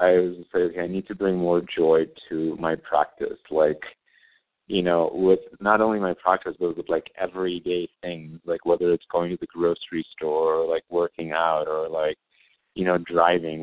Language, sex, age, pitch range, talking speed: English, male, 30-49, 85-95 Hz, 190 wpm